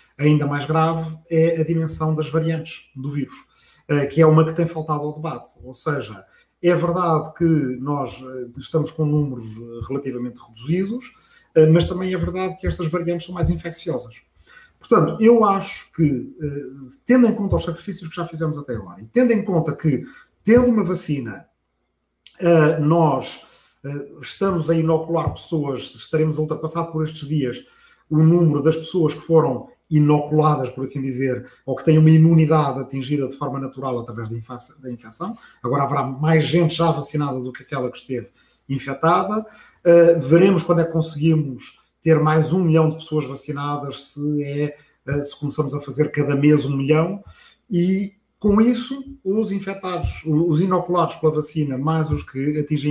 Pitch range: 140-170 Hz